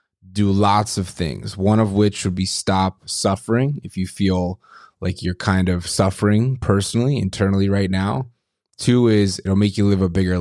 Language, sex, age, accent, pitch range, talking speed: English, male, 20-39, American, 95-110 Hz, 180 wpm